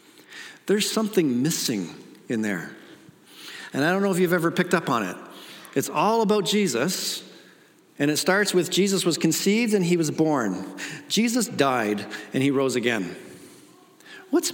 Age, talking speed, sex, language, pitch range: 50-69, 155 wpm, male, English, 145-210 Hz